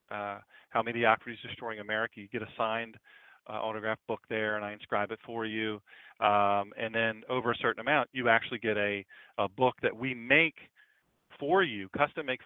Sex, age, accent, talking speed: male, 40-59, American, 195 wpm